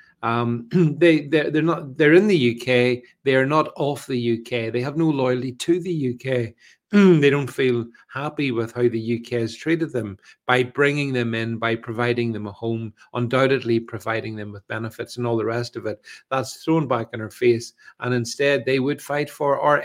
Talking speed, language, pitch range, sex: 195 wpm, English, 120-165 Hz, male